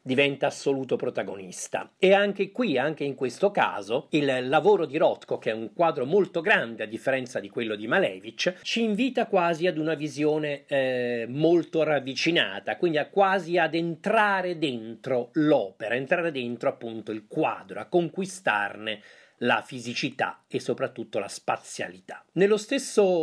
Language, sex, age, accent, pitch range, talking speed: Italian, male, 40-59, native, 125-185 Hz, 145 wpm